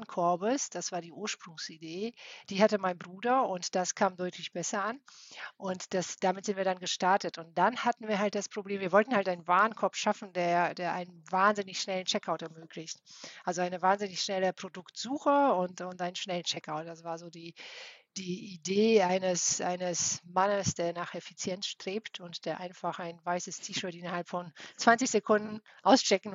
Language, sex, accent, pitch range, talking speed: German, female, German, 170-200 Hz, 175 wpm